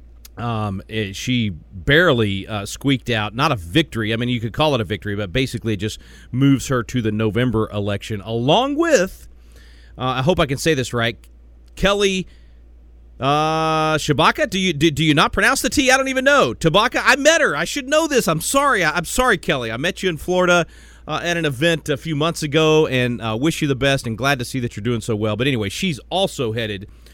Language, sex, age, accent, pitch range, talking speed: English, male, 40-59, American, 100-150 Hz, 225 wpm